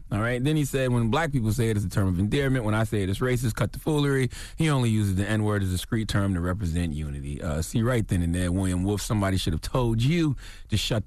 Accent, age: American, 30-49